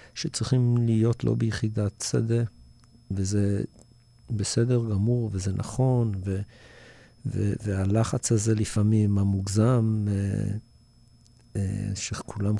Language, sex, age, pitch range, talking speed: Hebrew, male, 50-69, 100-120 Hz, 80 wpm